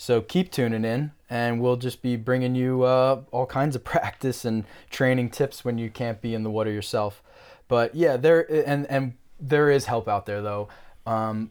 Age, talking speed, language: 20-39, 200 wpm, English